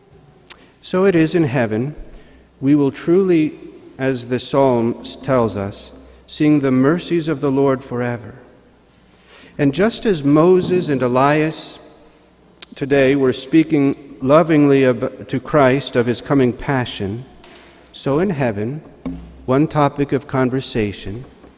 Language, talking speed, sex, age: English, 120 wpm, male, 50-69